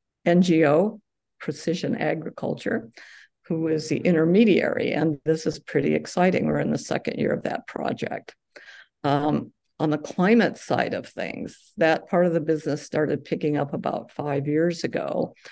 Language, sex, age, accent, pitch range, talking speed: English, female, 50-69, American, 145-175 Hz, 150 wpm